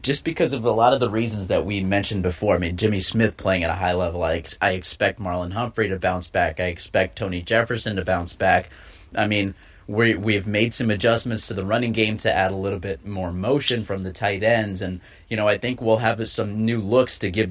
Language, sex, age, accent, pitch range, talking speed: English, male, 30-49, American, 95-115 Hz, 235 wpm